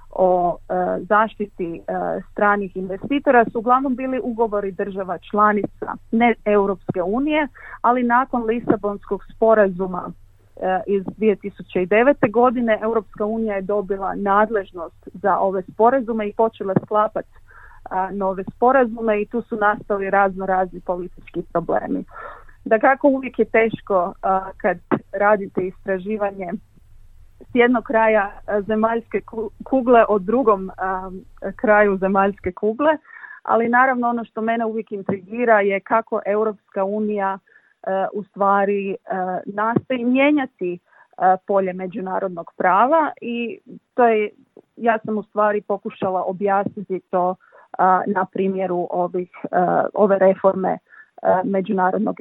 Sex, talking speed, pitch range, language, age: female, 115 wpm, 190-225 Hz, Croatian, 40-59